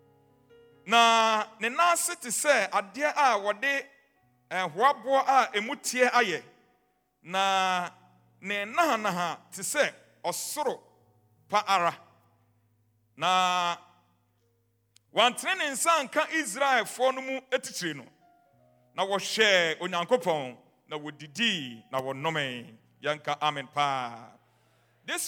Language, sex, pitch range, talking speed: English, male, 175-270 Hz, 110 wpm